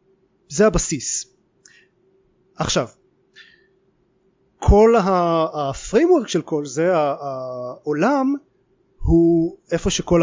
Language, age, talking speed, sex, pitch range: Hebrew, 30-49, 70 wpm, male, 145-185 Hz